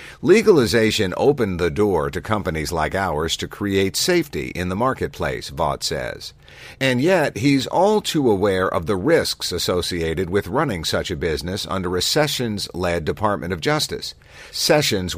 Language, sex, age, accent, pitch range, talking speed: English, male, 50-69, American, 85-120 Hz, 150 wpm